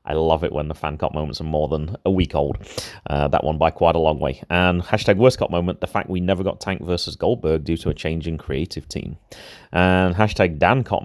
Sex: male